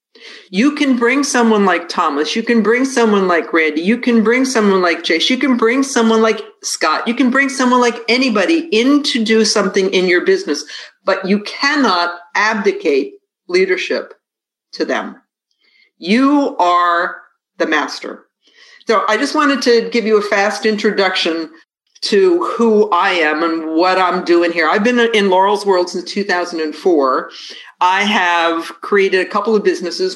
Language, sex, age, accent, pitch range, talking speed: English, female, 50-69, American, 175-240 Hz, 160 wpm